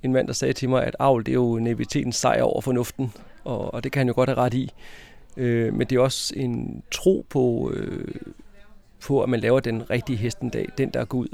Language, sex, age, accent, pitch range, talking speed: Danish, male, 40-59, native, 115-135 Hz, 245 wpm